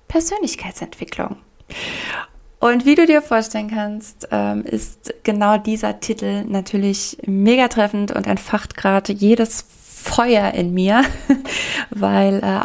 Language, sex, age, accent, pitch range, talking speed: German, female, 20-39, German, 195-225 Hz, 115 wpm